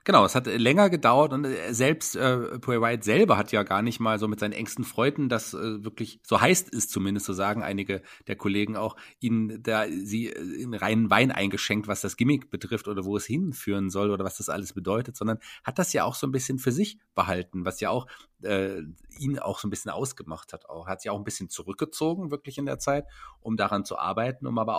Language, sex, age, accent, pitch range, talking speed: German, male, 30-49, German, 100-120 Hz, 230 wpm